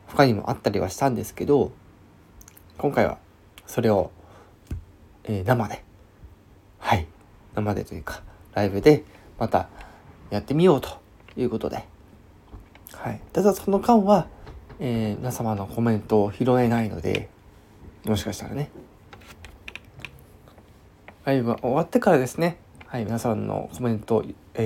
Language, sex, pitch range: Japanese, male, 100-135 Hz